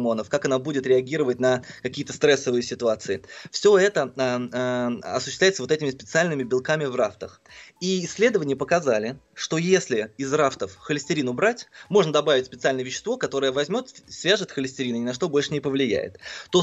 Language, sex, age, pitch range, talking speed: Russian, male, 20-39, 125-155 Hz, 160 wpm